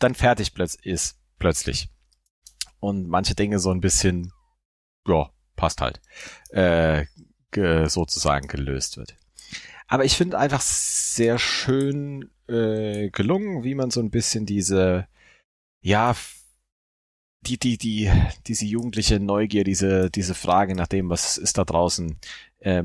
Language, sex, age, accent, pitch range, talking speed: German, male, 30-49, German, 85-110 Hz, 130 wpm